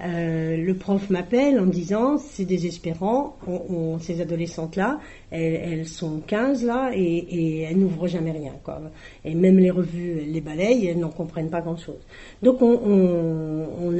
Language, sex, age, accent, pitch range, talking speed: French, female, 50-69, French, 165-215 Hz, 170 wpm